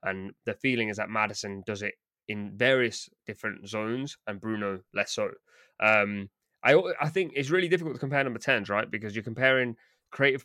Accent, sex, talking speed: British, male, 185 wpm